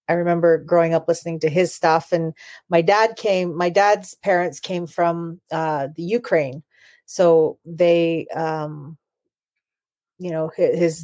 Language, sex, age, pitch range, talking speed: English, female, 40-59, 160-185 Hz, 145 wpm